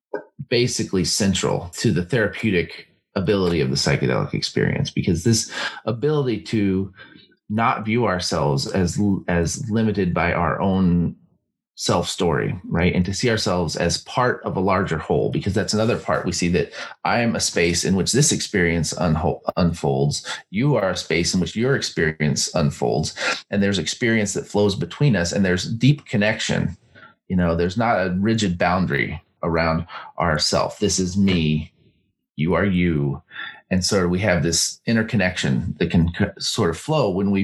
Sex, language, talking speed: male, English, 160 wpm